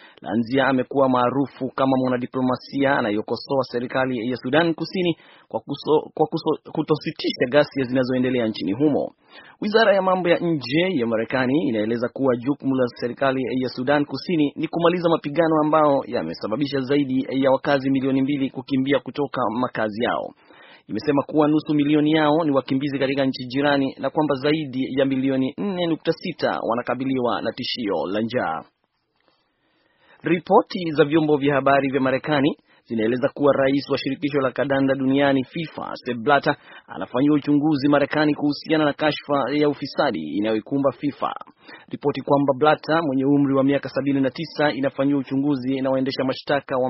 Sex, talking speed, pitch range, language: male, 145 wpm, 130-150 Hz, Swahili